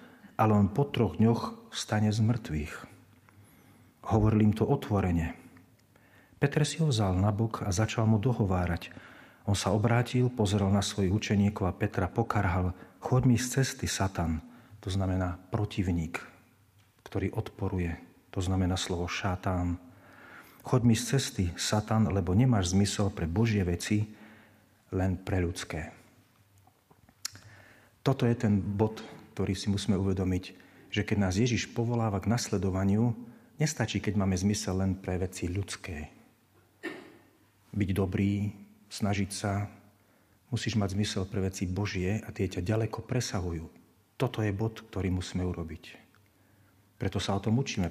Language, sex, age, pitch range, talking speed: Slovak, male, 40-59, 95-115 Hz, 135 wpm